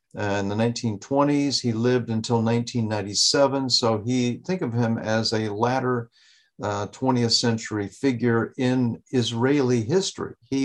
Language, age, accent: English, 50-69, American